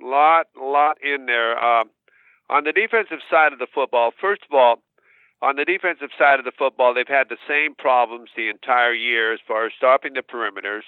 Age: 50-69